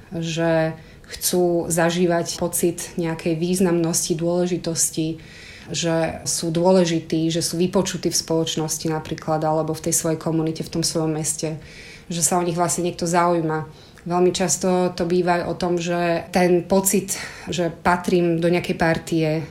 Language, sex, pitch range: Slovak, female, 165-180 Hz